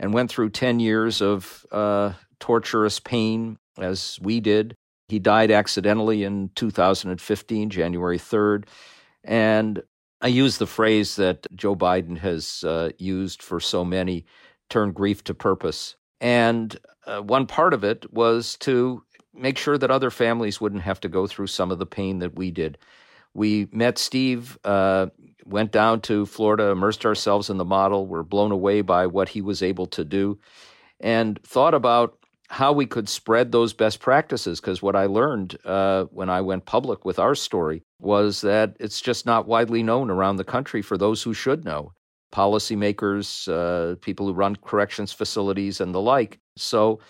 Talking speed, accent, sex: 170 wpm, American, male